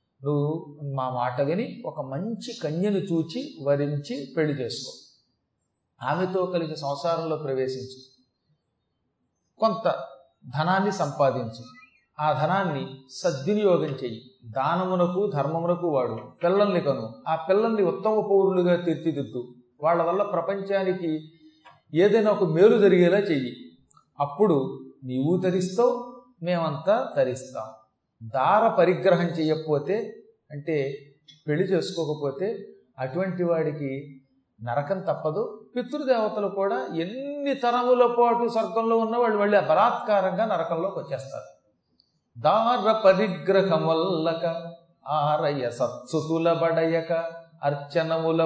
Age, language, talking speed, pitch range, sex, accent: 40-59, Telugu, 90 wpm, 140-190 Hz, male, native